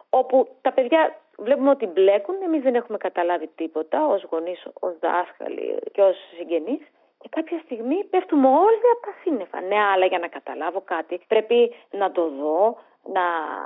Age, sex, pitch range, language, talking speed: 30-49, female, 200-305 Hz, Greek, 165 wpm